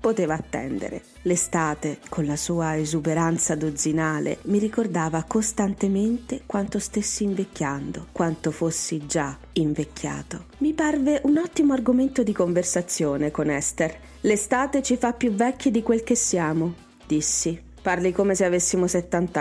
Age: 30-49